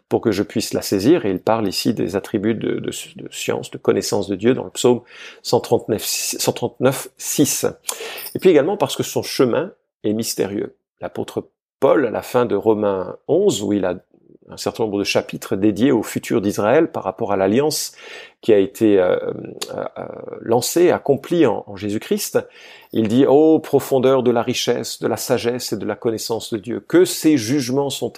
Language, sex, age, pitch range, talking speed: French, male, 50-69, 110-155 Hz, 190 wpm